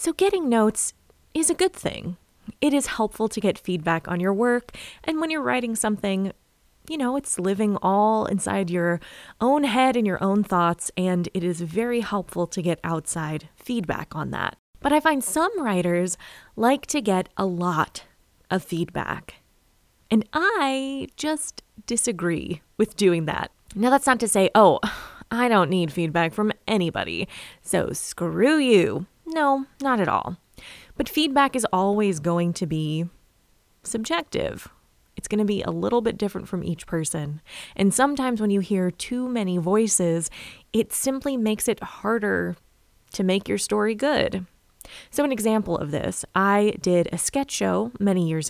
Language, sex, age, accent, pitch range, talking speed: English, female, 20-39, American, 175-245 Hz, 165 wpm